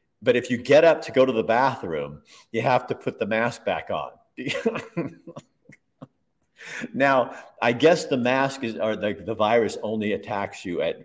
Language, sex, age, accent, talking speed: English, male, 50-69, American, 175 wpm